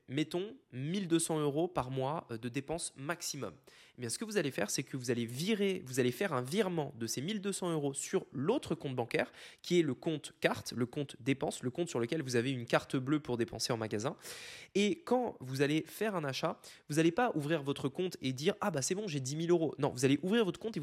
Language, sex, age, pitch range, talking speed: French, male, 20-39, 130-170 Hz, 245 wpm